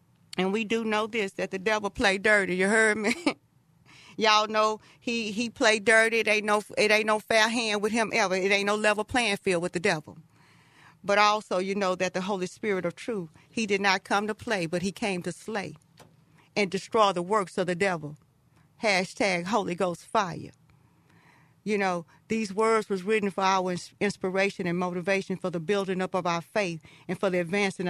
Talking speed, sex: 200 wpm, female